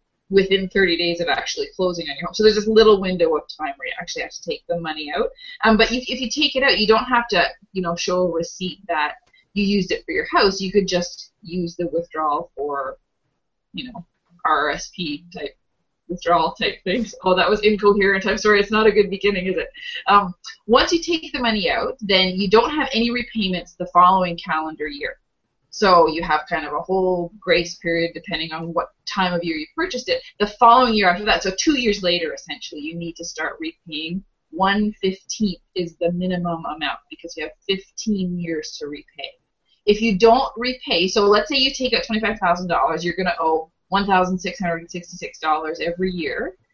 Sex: female